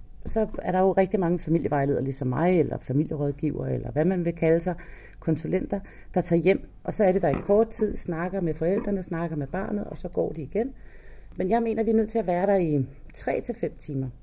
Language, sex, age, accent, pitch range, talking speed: Danish, female, 40-59, native, 145-195 Hz, 230 wpm